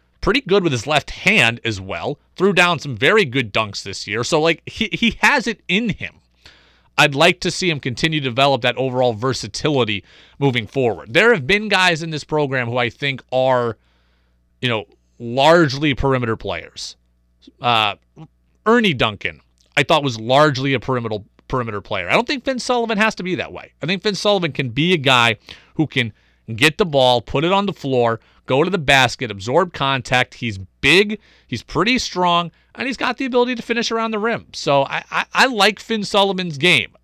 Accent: American